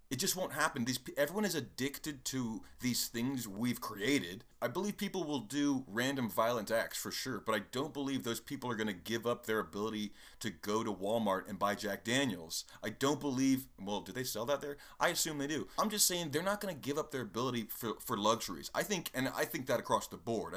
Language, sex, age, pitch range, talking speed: English, male, 30-49, 110-150 Hz, 235 wpm